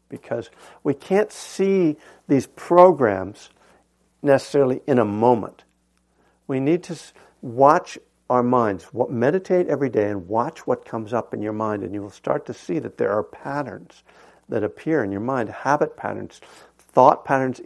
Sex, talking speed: male, 160 wpm